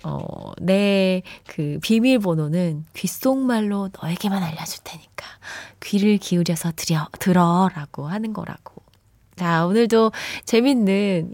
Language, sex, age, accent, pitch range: Korean, female, 20-39, native, 175-270 Hz